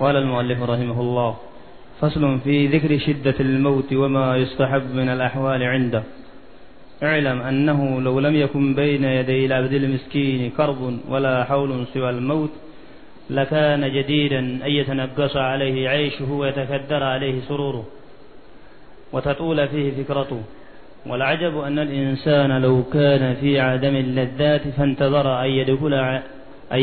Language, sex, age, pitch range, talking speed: Arabic, male, 30-49, 135-150 Hz, 115 wpm